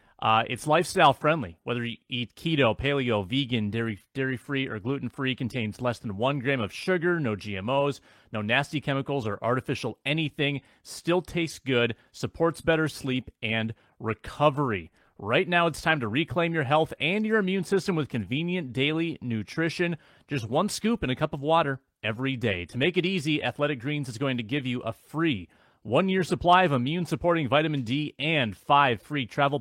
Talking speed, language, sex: 170 wpm, English, male